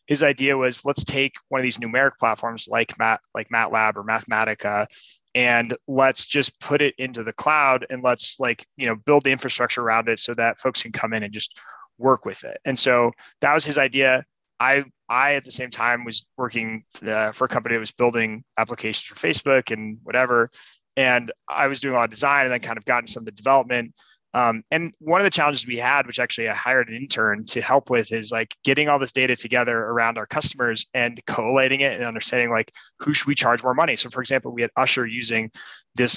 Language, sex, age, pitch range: English, male, 20-39, 115-145 Hz